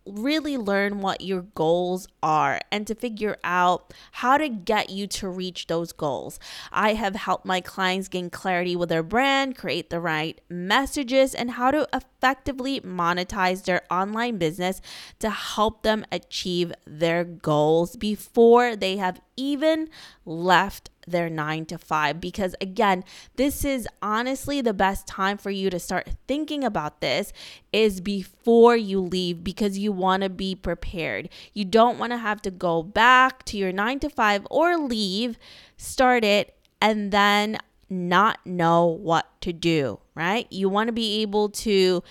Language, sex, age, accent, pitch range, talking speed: English, female, 20-39, American, 180-235 Hz, 160 wpm